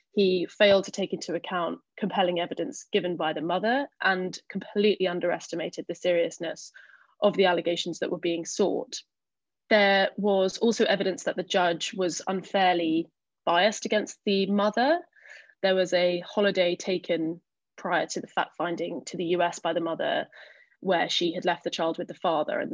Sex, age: female, 20-39